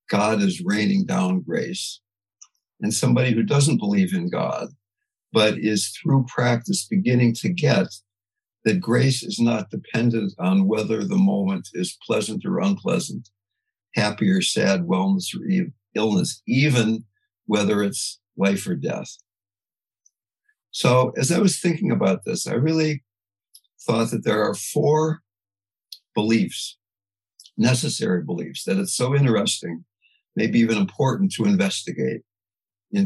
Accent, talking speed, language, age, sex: American, 130 wpm, English, 60-79, male